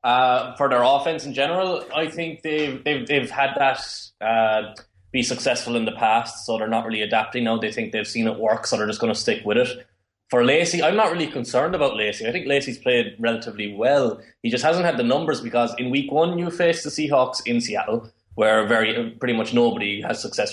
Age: 20-39